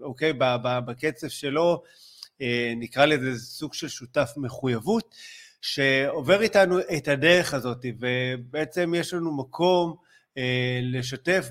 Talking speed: 105 wpm